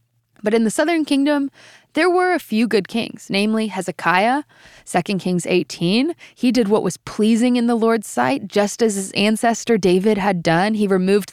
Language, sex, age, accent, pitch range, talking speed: English, female, 20-39, American, 180-235 Hz, 180 wpm